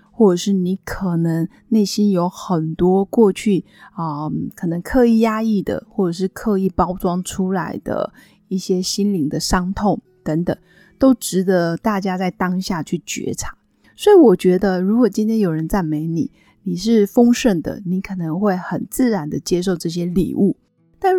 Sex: female